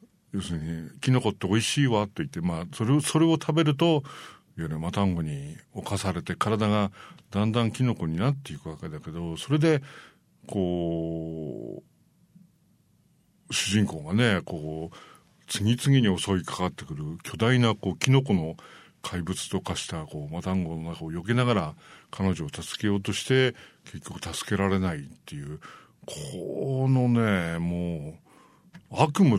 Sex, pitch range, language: male, 90-145 Hz, English